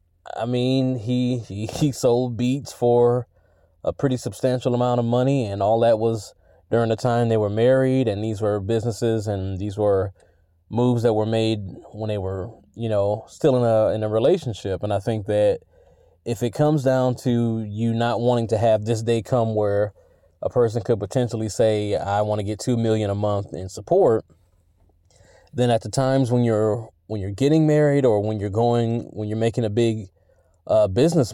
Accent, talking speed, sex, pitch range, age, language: American, 190 wpm, male, 105-125 Hz, 20-39, English